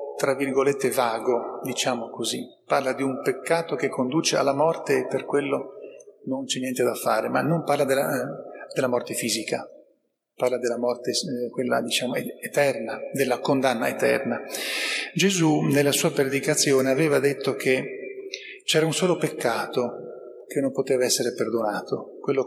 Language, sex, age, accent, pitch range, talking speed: Italian, male, 40-59, native, 135-195 Hz, 145 wpm